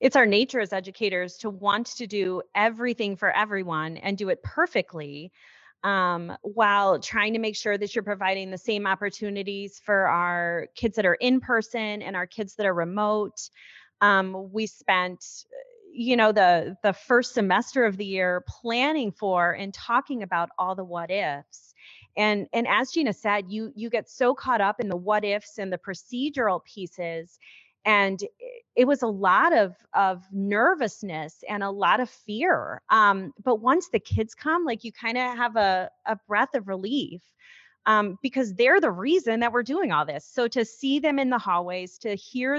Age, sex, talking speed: 30-49, female, 180 wpm